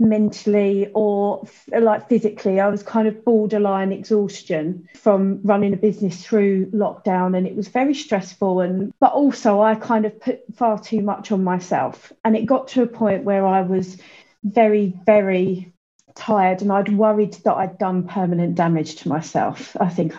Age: 30-49